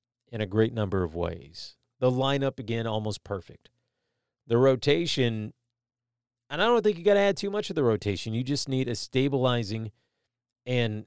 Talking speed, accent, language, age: 175 wpm, American, English, 40-59